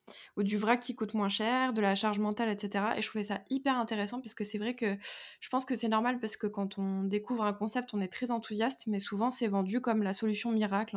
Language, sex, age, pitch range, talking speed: French, female, 20-39, 200-230 Hz, 255 wpm